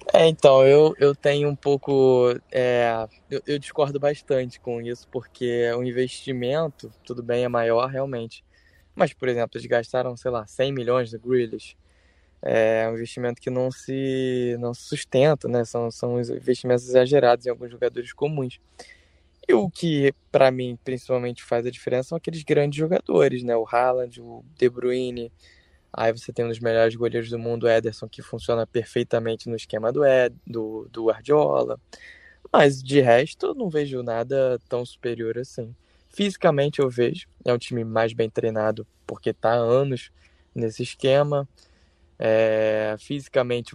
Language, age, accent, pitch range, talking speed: Portuguese, 10-29, Brazilian, 115-135 Hz, 160 wpm